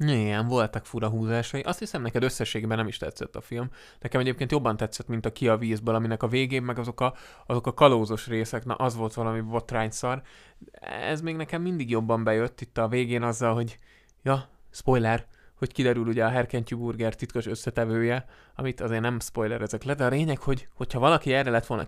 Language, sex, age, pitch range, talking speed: Hungarian, male, 20-39, 110-130 Hz, 200 wpm